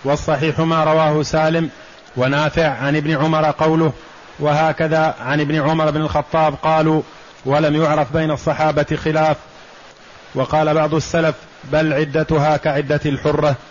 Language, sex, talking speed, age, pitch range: Arabic, male, 125 wpm, 30-49, 150-155 Hz